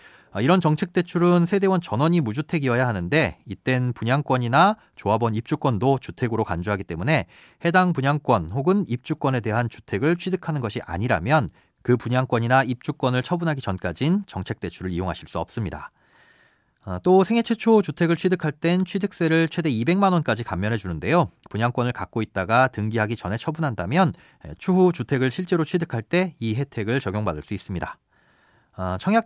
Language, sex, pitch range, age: Korean, male, 110-175 Hz, 30-49